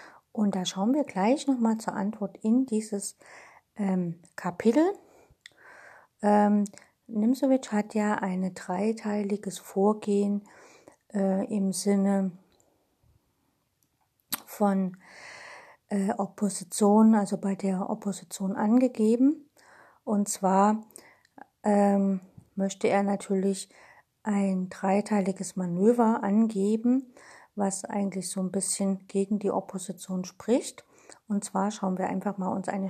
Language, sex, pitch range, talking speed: German, female, 190-220 Hz, 105 wpm